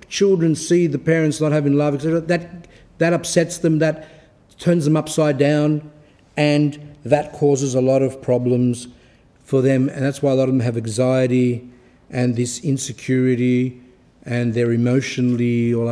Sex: male